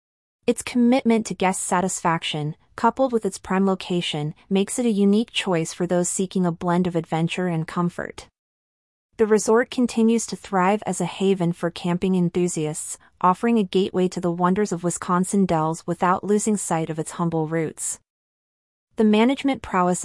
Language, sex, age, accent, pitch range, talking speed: English, female, 30-49, American, 170-205 Hz, 160 wpm